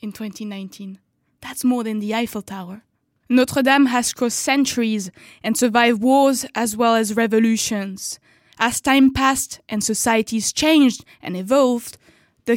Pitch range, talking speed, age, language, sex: 210-250 Hz, 140 wpm, 20-39, English, female